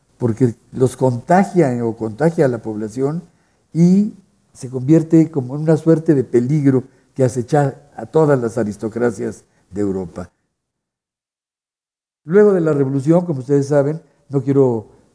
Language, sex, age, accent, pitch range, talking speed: Spanish, male, 60-79, Mexican, 120-150 Hz, 135 wpm